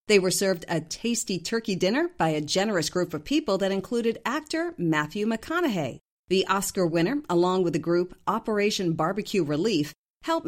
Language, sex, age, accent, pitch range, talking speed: English, female, 50-69, American, 165-240 Hz, 165 wpm